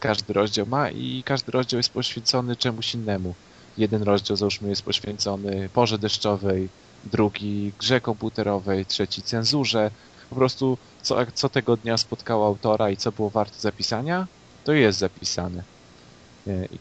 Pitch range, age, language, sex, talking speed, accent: 95-110 Hz, 20-39, Polish, male, 140 wpm, native